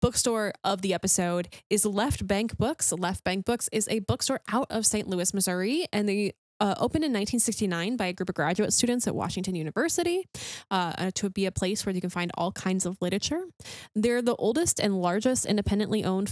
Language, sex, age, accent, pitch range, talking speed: English, female, 10-29, American, 190-240 Hz, 200 wpm